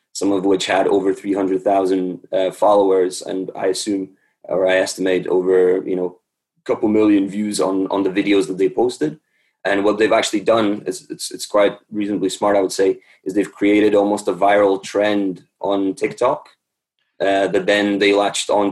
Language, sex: English, male